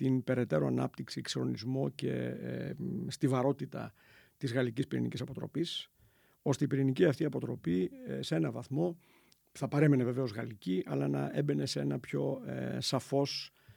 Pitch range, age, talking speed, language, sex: 120-160 Hz, 50-69, 155 wpm, Greek, male